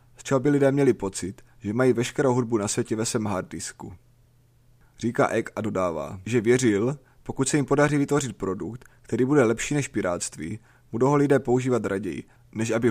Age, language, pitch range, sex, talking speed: 30-49, Czech, 110-130 Hz, male, 180 wpm